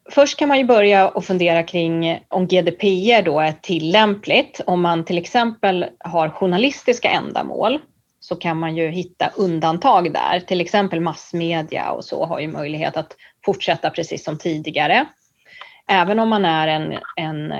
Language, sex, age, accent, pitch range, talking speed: Swedish, female, 30-49, native, 165-205 Hz, 155 wpm